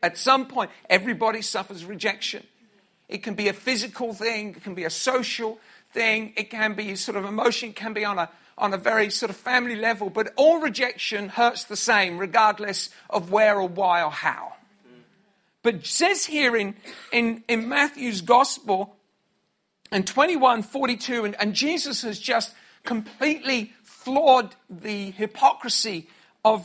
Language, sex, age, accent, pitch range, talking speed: English, male, 50-69, British, 205-260 Hz, 160 wpm